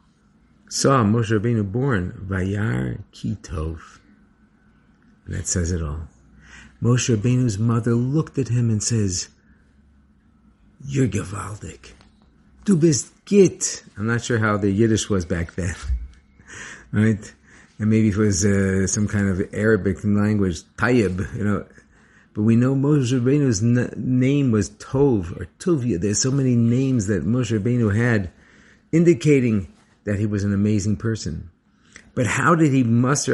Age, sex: 50-69, male